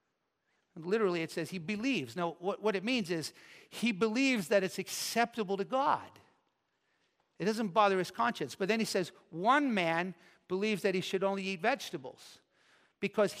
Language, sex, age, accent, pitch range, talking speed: English, male, 50-69, American, 170-215 Hz, 165 wpm